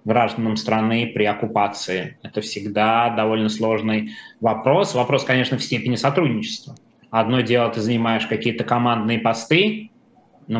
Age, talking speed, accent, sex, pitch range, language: 20-39, 125 wpm, native, male, 110-125 Hz, Russian